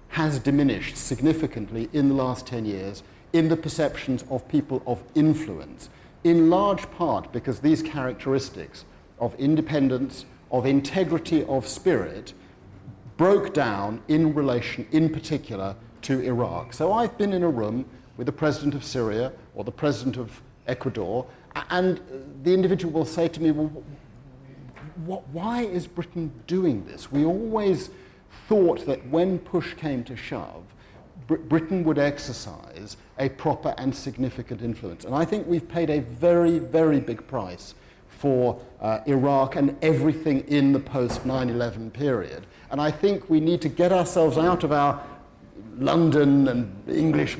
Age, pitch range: 50-69, 125-160 Hz